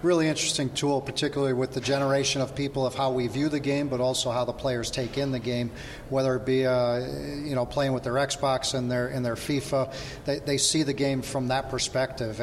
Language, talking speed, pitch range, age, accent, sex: English, 225 wpm, 120-135 Hz, 40-59, American, male